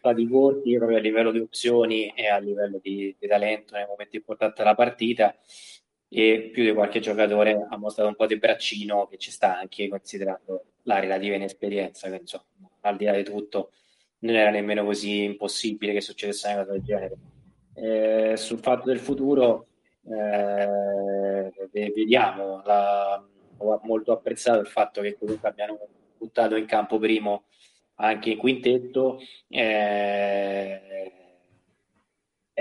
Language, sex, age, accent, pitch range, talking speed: Italian, male, 20-39, native, 100-110 Hz, 145 wpm